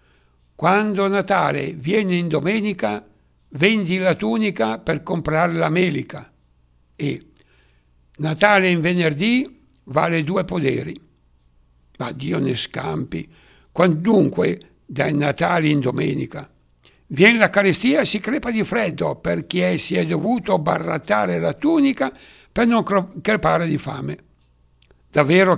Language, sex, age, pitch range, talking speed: Italian, male, 60-79, 145-190 Hz, 115 wpm